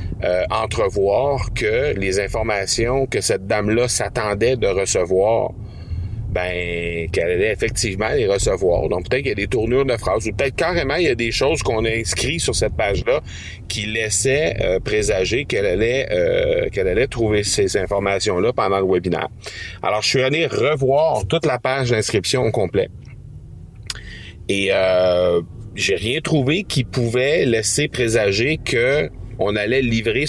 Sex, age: male, 40-59